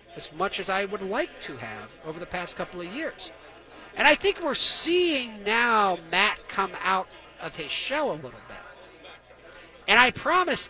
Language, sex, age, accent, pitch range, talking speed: English, male, 40-59, American, 170-230 Hz, 180 wpm